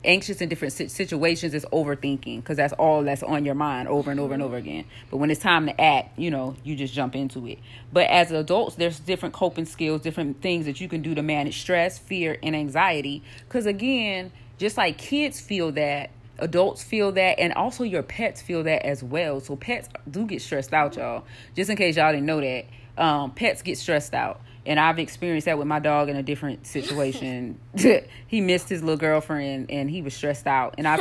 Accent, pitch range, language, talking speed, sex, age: American, 145-180 Hz, English, 215 wpm, female, 30-49